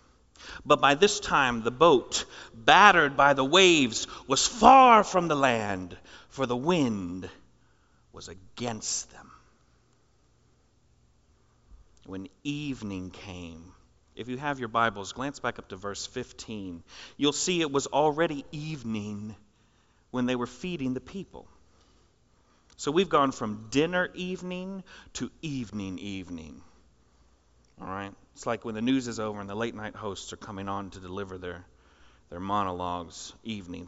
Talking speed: 140 wpm